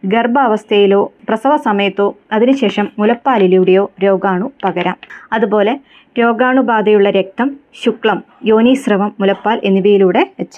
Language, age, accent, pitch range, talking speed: Malayalam, 20-39, native, 200-250 Hz, 85 wpm